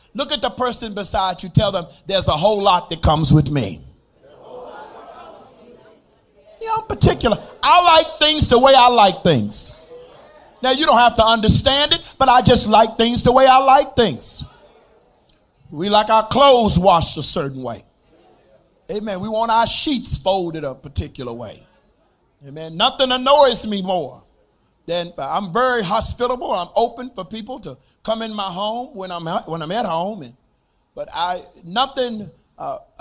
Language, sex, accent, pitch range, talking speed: English, male, American, 170-255 Hz, 165 wpm